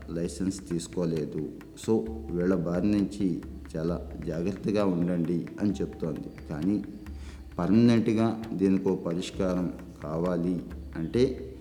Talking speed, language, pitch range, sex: 90 wpm, Telugu, 85-100 Hz, male